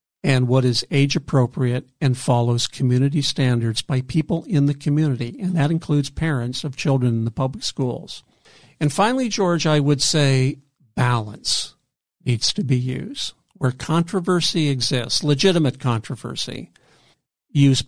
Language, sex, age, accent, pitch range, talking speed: English, male, 50-69, American, 125-155 Hz, 135 wpm